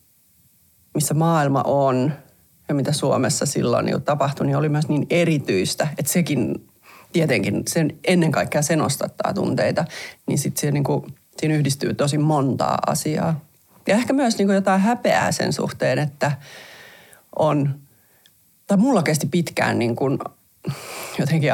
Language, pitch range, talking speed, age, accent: Finnish, 135-170 Hz, 135 wpm, 30-49, native